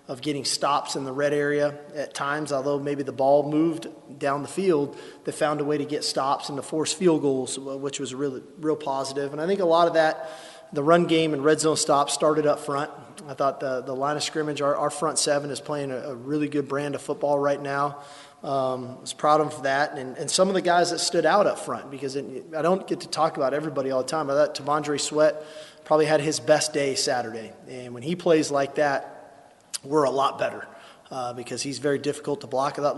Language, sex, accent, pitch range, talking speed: English, male, American, 140-155 Hz, 240 wpm